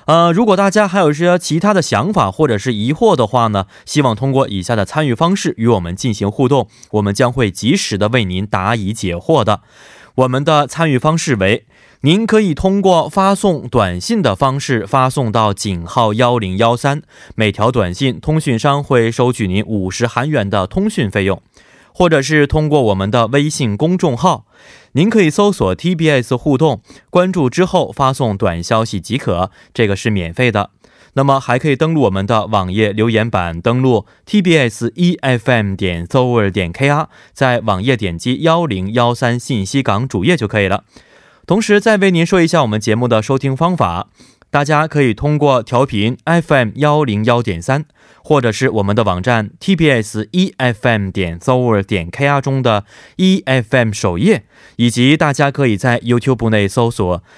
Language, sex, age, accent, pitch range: Korean, male, 20-39, Chinese, 105-150 Hz